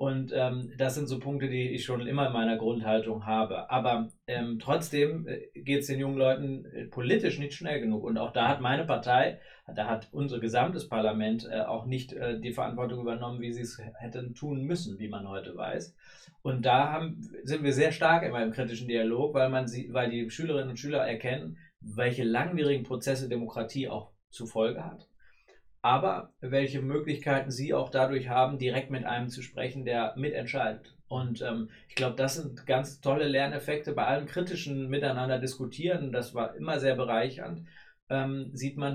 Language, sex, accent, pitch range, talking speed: German, male, German, 120-140 Hz, 180 wpm